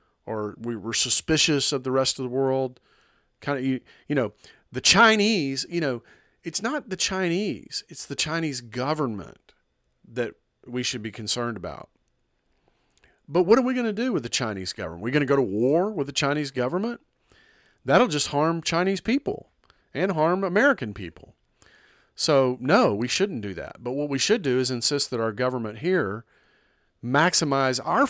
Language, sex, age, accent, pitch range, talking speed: English, male, 40-59, American, 125-170 Hz, 175 wpm